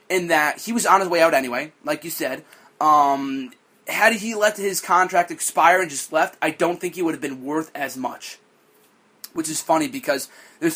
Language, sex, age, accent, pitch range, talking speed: English, male, 30-49, American, 145-190 Hz, 205 wpm